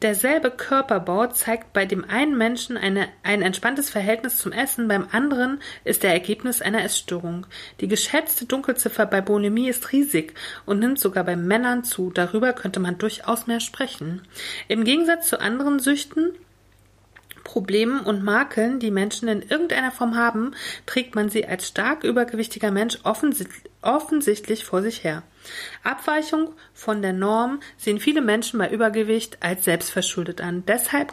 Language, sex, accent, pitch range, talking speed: German, female, German, 190-250 Hz, 145 wpm